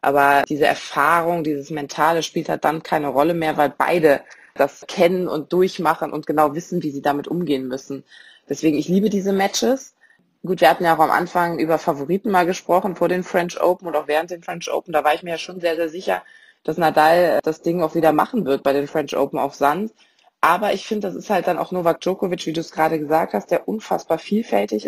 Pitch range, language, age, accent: 150-180 Hz, German, 20-39, German